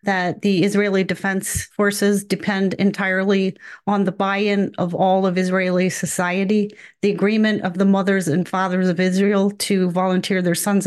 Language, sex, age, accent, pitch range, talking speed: English, female, 40-59, American, 180-205 Hz, 155 wpm